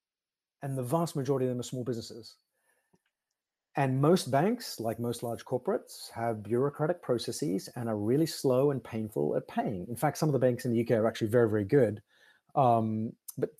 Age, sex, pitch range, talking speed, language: 30-49, male, 120-155 Hz, 190 wpm, English